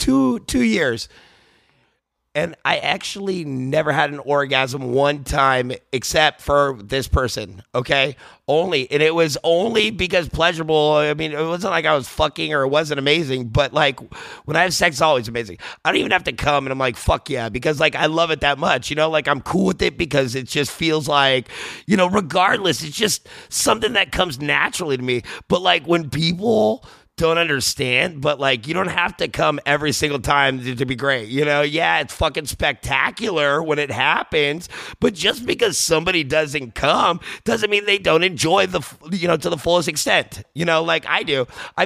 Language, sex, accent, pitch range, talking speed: English, male, American, 135-170 Hz, 200 wpm